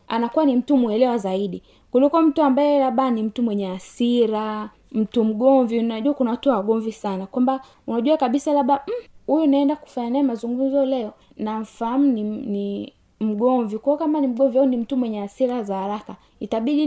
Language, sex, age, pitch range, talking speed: Swahili, female, 20-39, 215-270 Hz, 170 wpm